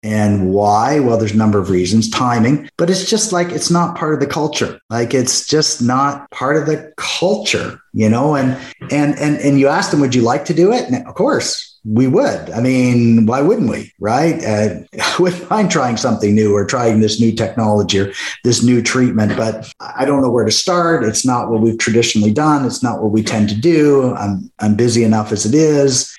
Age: 50-69